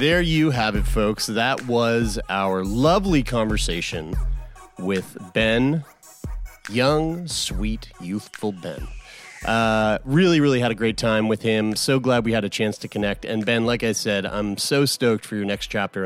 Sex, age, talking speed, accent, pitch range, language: male, 30-49, 170 wpm, American, 110-145 Hz, English